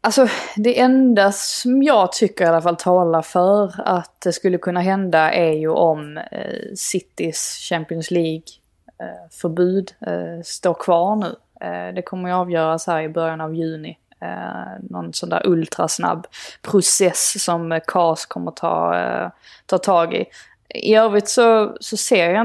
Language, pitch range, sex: Swedish, 165-195 Hz, female